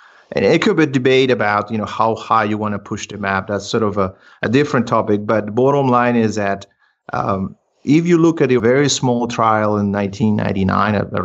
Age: 40-59